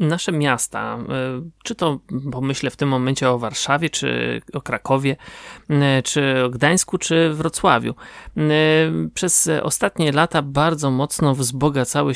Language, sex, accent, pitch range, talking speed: Polish, male, native, 130-155 Hz, 120 wpm